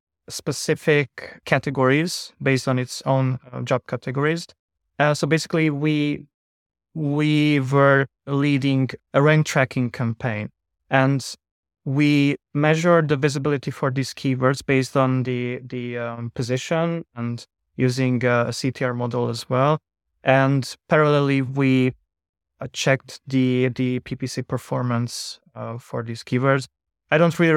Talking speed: 120 wpm